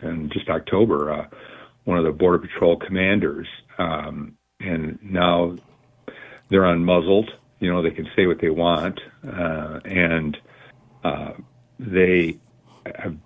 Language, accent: English, American